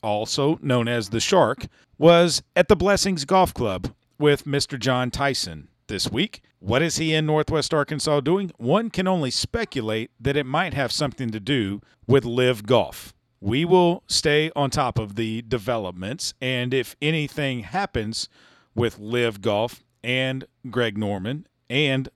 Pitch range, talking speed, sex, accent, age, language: 115-150 Hz, 155 wpm, male, American, 40-59, English